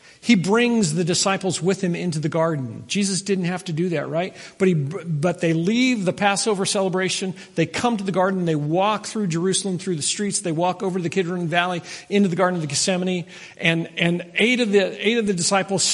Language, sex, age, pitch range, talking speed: English, male, 50-69, 165-200 Hz, 220 wpm